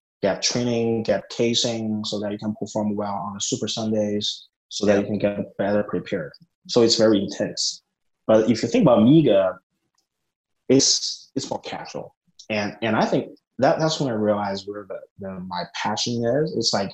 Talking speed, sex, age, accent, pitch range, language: 180 wpm, male, 20-39, American, 100-120 Hz, English